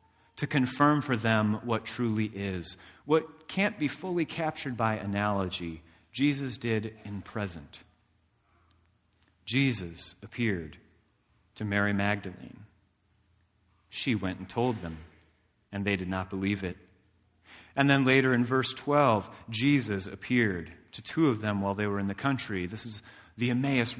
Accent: American